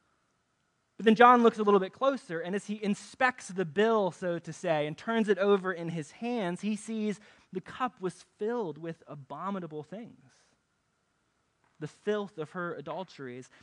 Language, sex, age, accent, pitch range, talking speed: English, male, 20-39, American, 145-195 Hz, 165 wpm